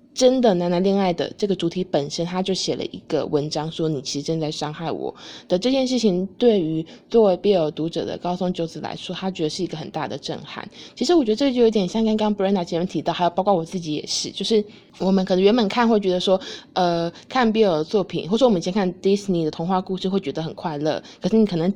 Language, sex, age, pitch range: Chinese, female, 20-39, 170-210 Hz